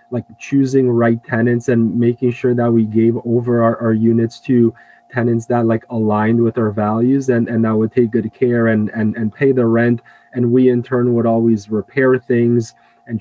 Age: 20-39